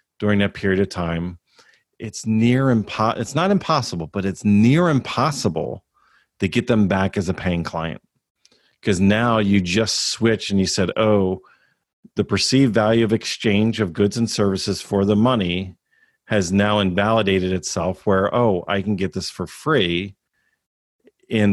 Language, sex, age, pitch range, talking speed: English, male, 40-59, 90-110 Hz, 155 wpm